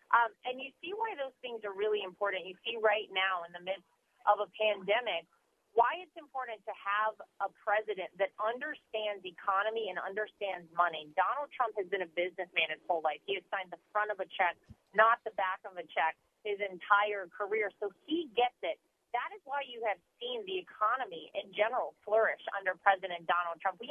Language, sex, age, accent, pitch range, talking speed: English, female, 30-49, American, 200-270 Hz, 200 wpm